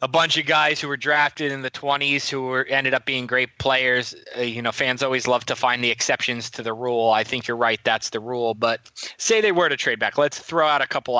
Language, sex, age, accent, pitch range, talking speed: English, male, 20-39, American, 120-135 Hz, 265 wpm